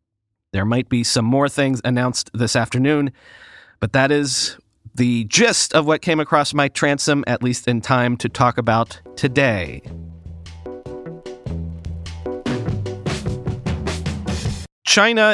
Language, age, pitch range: English, 30-49, 125-165 Hz